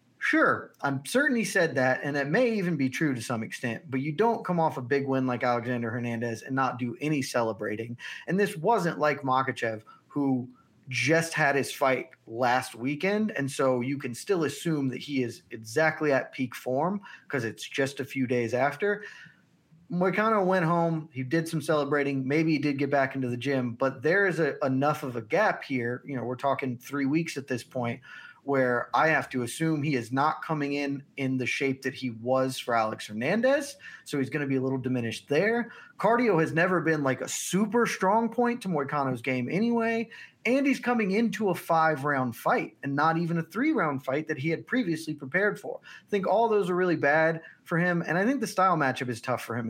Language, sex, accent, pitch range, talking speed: English, male, American, 130-175 Hz, 210 wpm